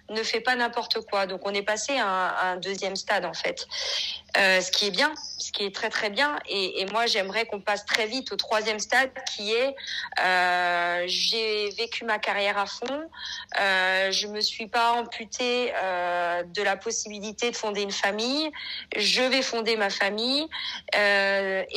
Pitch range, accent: 195-230 Hz, French